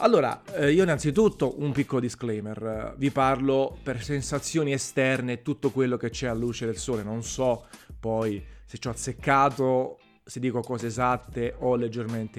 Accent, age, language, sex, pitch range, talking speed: native, 30-49, Italian, male, 110-140 Hz, 155 wpm